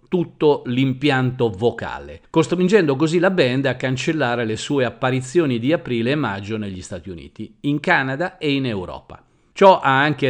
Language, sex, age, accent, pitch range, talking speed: Italian, male, 50-69, native, 115-150 Hz, 155 wpm